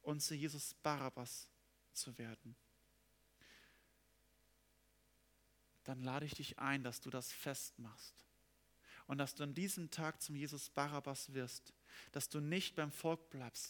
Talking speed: 135 wpm